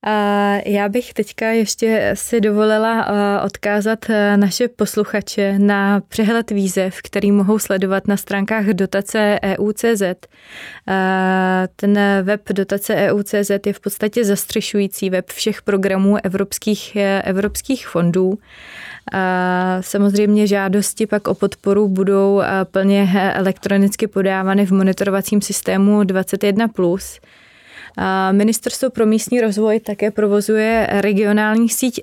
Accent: native